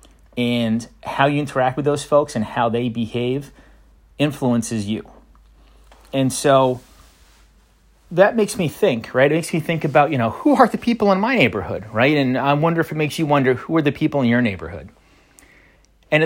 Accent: American